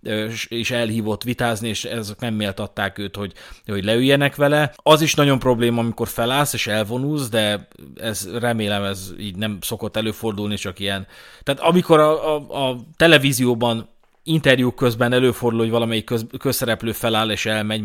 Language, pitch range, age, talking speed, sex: Hungarian, 105-125 Hz, 30-49, 150 wpm, male